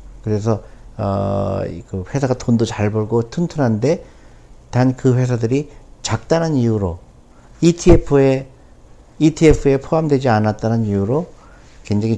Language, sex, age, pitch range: Korean, male, 50-69, 95-125 Hz